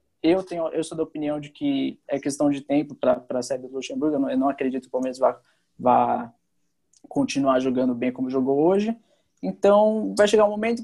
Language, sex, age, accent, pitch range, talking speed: Portuguese, male, 20-39, Brazilian, 145-190 Hz, 215 wpm